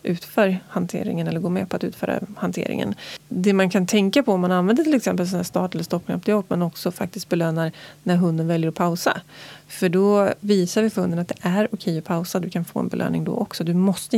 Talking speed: 235 wpm